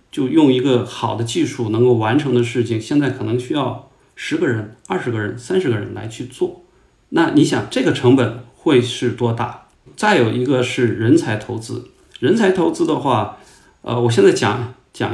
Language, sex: Chinese, male